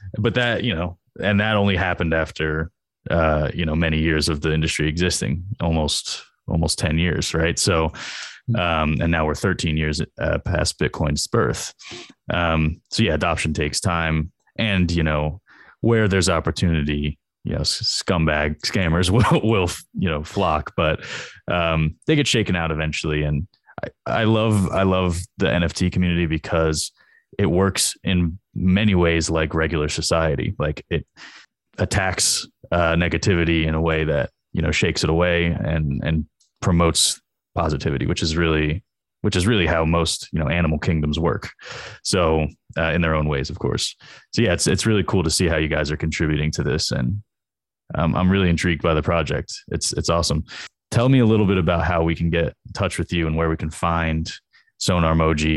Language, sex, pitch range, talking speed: English, male, 80-90 Hz, 180 wpm